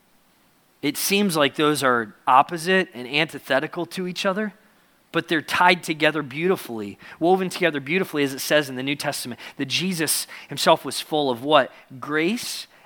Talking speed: 160 wpm